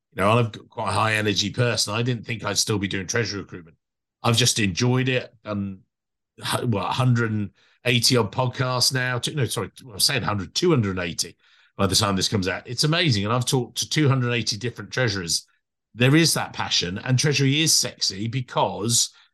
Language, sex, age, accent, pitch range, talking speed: English, male, 50-69, British, 105-130 Hz, 175 wpm